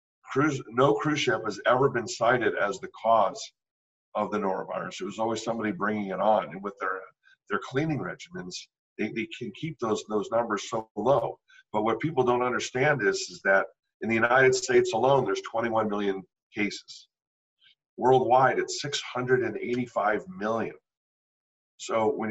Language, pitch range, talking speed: English, 100-150 Hz, 160 wpm